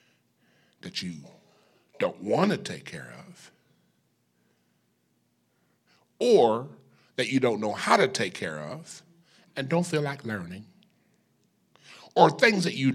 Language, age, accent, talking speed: English, 50-69, American, 120 wpm